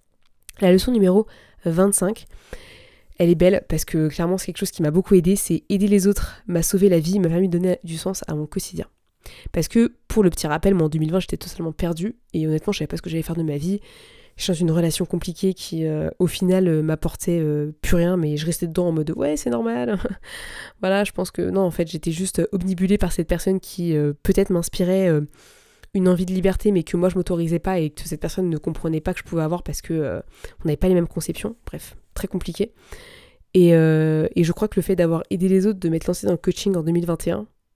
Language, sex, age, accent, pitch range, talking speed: French, female, 20-39, French, 165-195 Hz, 245 wpm